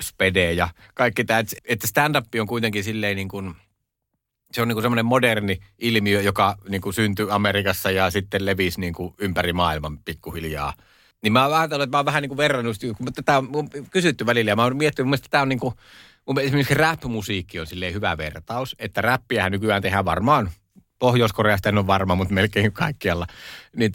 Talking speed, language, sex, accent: 185 wpm, Finnish, male, native